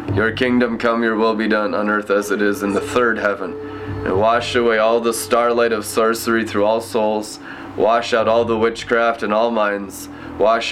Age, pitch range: 20-39, 110-125 Hz